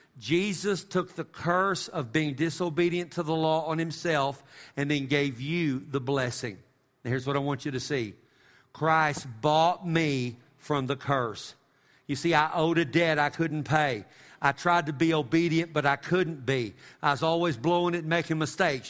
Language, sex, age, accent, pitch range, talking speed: English, male, 50-69, American, 130-165 Hz, 185 wpm